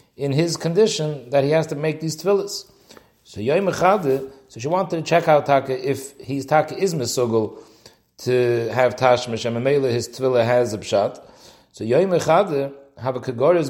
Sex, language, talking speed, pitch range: male, English, 160 wpm, 125-160 Hz